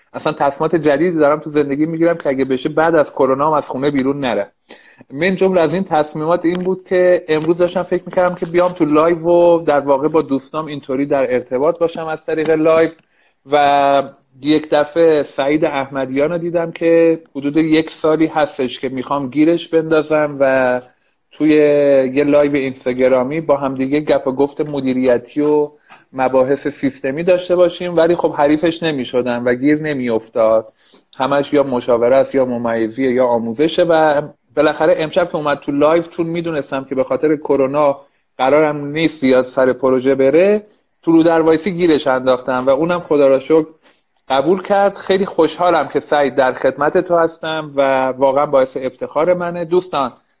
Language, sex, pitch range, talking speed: Persian, male, 135-165 Hz, 160 wpm